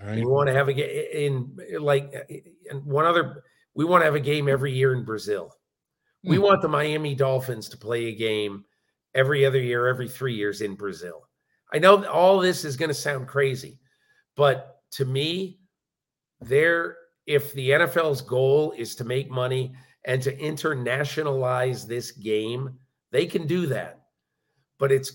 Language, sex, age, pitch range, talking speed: English, male, 50-69, 120-145 Hz, 165 wpm